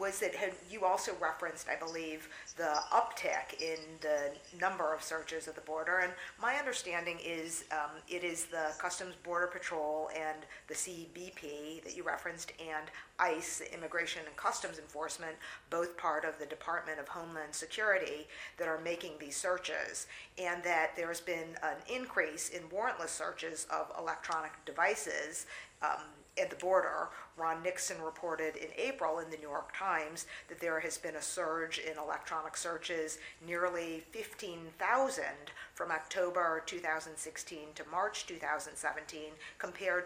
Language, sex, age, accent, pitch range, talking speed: English, female, 50-69, American, 155-175 Hz, 145 wpm